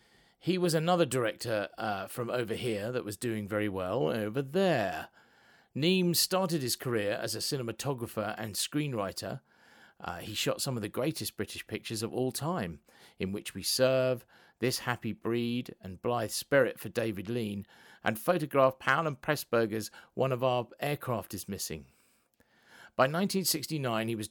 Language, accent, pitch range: English, British, 105-140 Hz